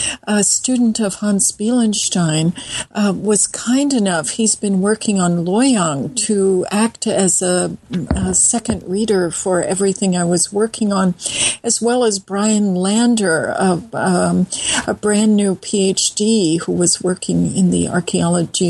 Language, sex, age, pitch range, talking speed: English, female, 50-69, 185-220 Hz, 140 wpm